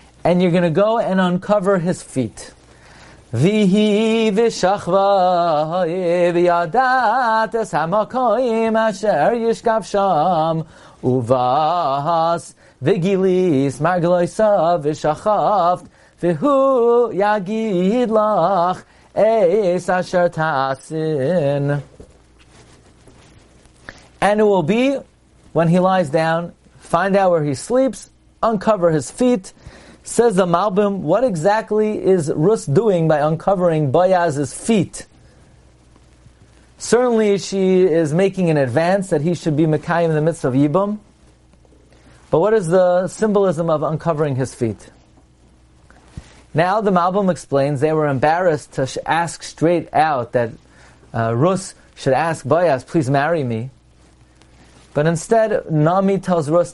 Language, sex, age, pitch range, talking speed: English, male, 40-59, 150-200 Hz, 95 wpm